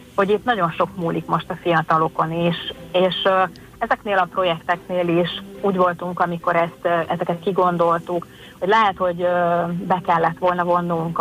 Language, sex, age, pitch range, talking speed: Hungarian, female, 30-49, 160-180 Hz, 165 wpm